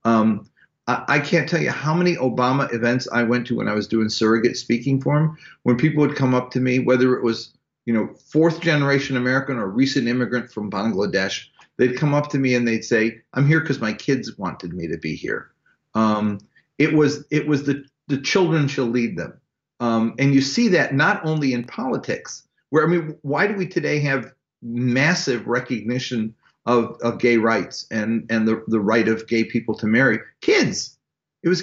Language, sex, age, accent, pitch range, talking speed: English, male, 40-59, American, 120-160 Hz, 200 wpm